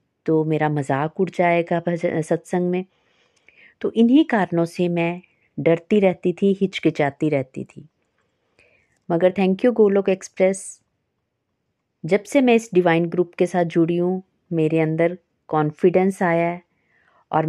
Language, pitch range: Hindi, 160-200 Hz